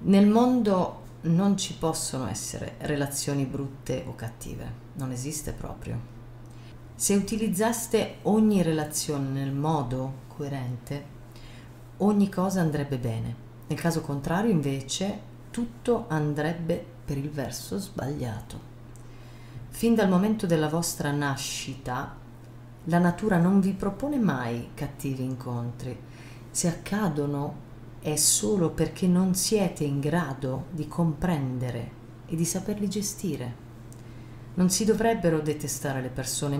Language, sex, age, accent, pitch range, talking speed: Italian, female, 40-59, native, 120-180 Hz, 115 wpm